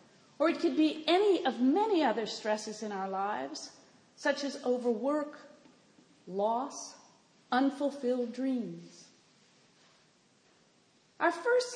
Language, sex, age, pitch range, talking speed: English, female, 40-59, 235-305 Hz, 100 wpm